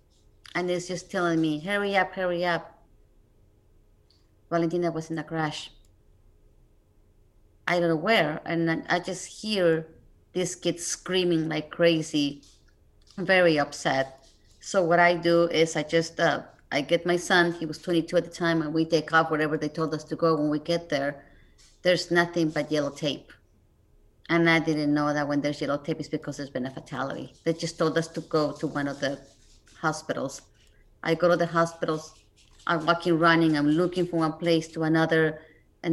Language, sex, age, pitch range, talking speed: English, female, 30-49, 150-180 Hz, 180 wpm